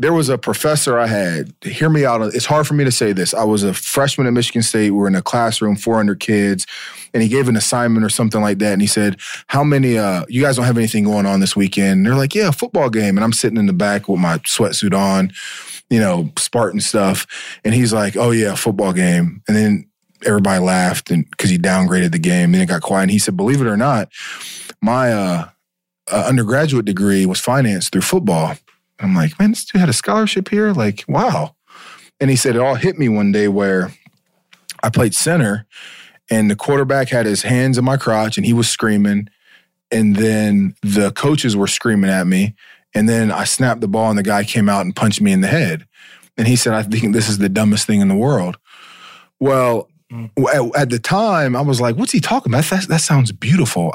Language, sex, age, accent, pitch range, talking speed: English, male, 20-39, American, 100-135 Hz, 225 wpm